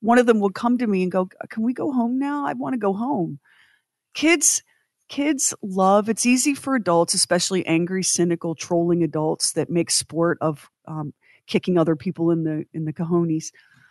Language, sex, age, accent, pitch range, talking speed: English, female, 40-59, American, 165-215 Hz, 190 wpm